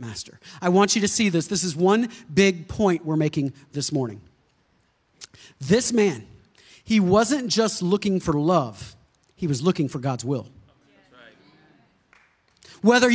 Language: English